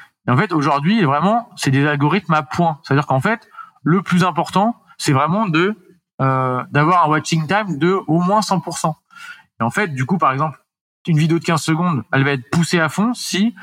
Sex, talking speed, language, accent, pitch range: male, 205 wpm, French, French, 145-185 Hz